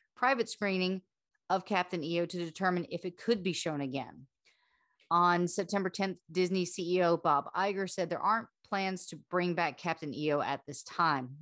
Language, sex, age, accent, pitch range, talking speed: English, female, 40-59, American, 160-190 Hz, 170 wpm